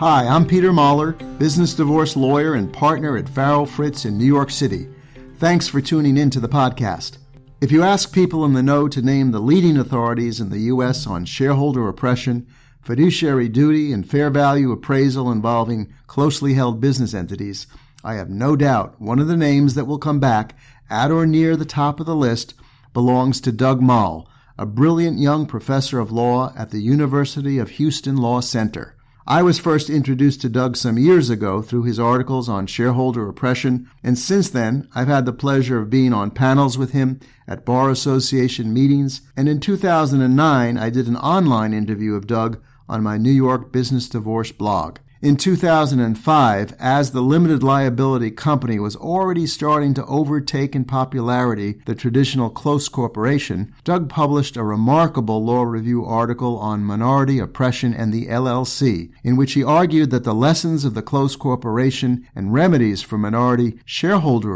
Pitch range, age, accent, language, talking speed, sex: 120-145 Hz, 50-69, American, English, 170 wpm, male